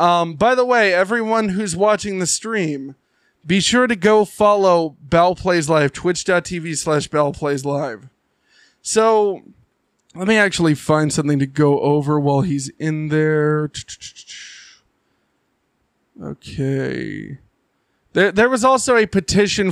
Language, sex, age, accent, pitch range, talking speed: English, male, 20-39, American, 145-195 Hz, 115 wpm